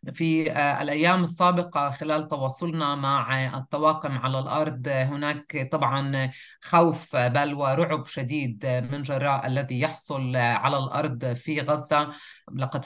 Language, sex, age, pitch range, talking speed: Arabic, female, 30-49, 130-155 Hz, 110 wpm